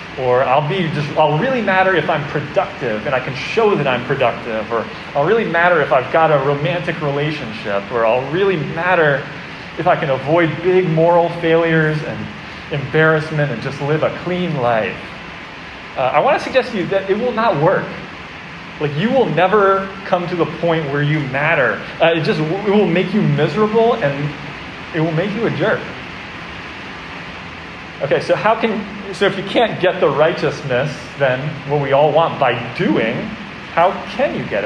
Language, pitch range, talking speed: English, 145-180 Hz, 185 wpm